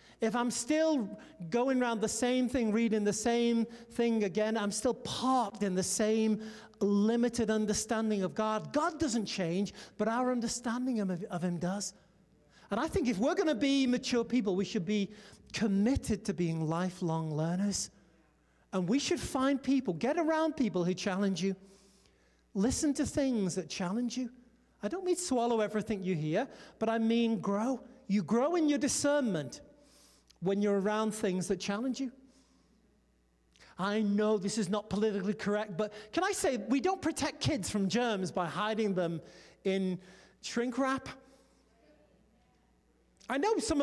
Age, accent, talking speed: 40-59, British, 160 wpm